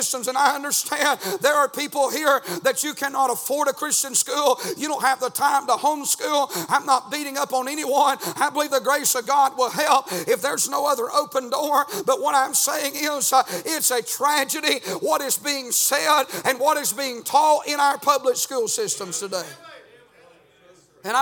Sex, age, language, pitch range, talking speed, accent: male, 50-69, English, 190-280 Hz, 185 wpm, American